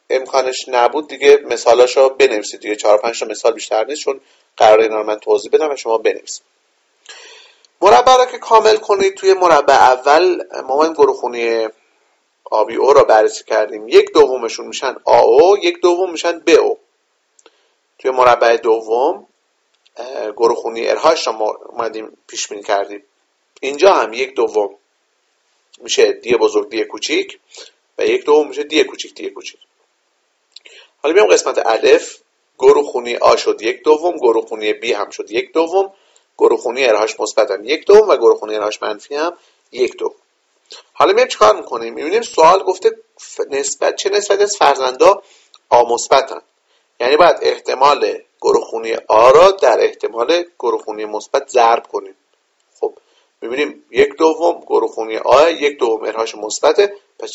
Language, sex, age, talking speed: Persian, male, 40-59, 145 wpm